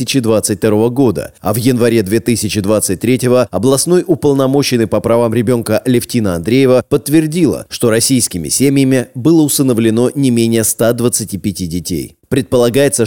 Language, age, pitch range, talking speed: Russian, 30-49, 105-130 Hz, 115 wpm